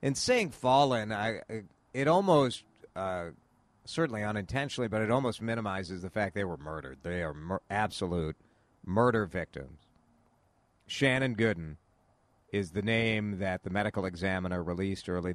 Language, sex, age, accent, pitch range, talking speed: English, male, 50-69, American, 95-125 Hz, 130 wpm